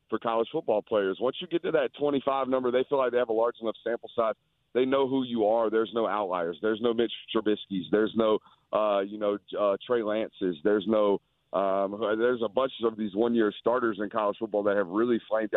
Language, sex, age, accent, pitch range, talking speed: English, male, 40-59, American, 105-130 Hz, 225 wpm